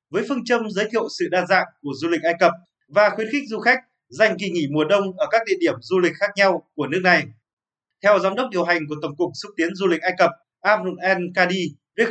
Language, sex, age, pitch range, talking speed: Vietnamese, male, 20-39, 170-215 Hz, 260 wpm